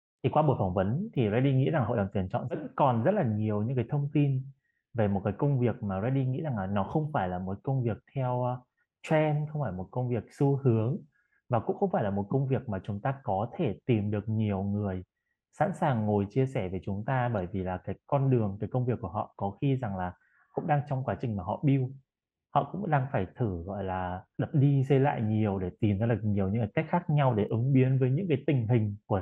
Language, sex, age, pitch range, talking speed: Vietnamese, male, 20-39, 105-140 Hz, 260 wpm